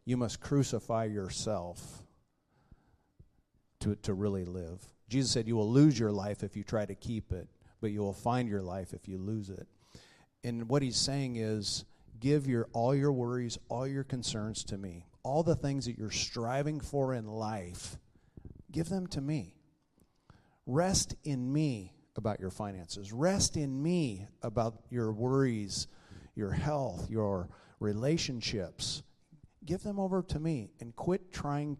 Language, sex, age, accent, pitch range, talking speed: English, male, 50-69, American, 105-135 Hz, 155 wpm